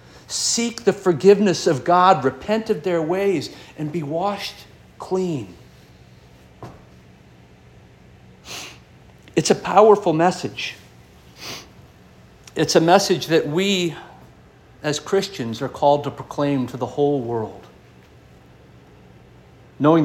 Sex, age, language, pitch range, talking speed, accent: male, 50-69, English, 105-160 Hz, 100 wpm, American